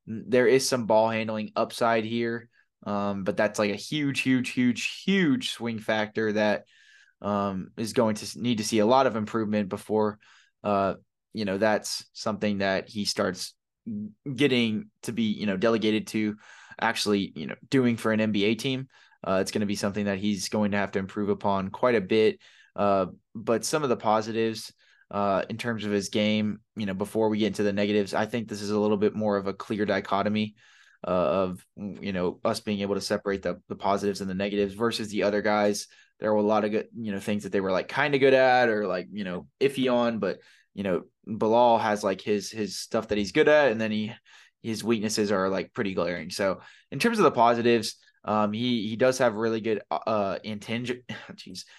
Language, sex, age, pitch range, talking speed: English, male, 20-39, 105-115 Hz, 210 wpm